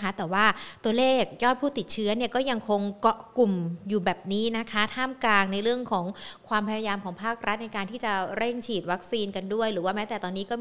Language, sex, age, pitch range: Thai, female, 20-39, 200-245 Hz